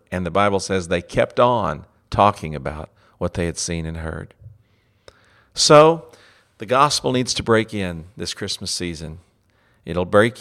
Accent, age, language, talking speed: American, 50-69, English, 155 wpm